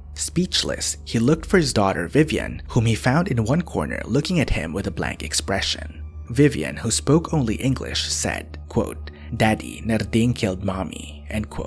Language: English